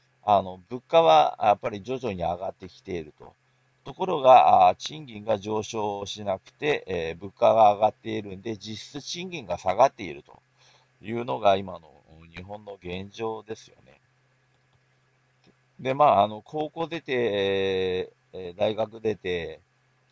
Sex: male